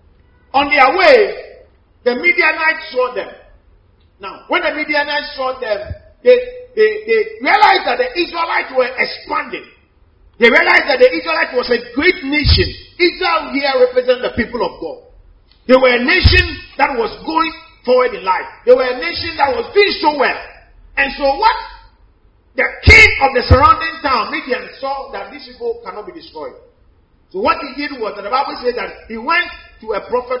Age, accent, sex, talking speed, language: 40-59, Nigerian, male, 175 wpm, English